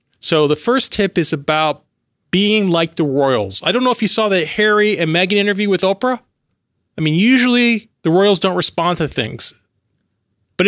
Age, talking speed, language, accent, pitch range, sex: 40-59, 185 wpm, English, American, 150-215 Hz, male